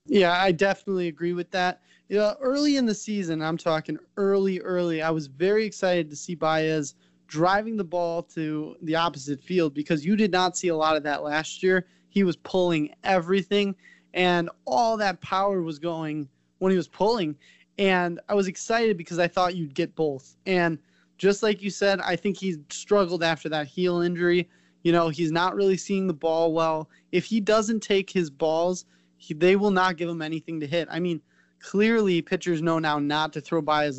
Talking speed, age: 195 wpm, 20-39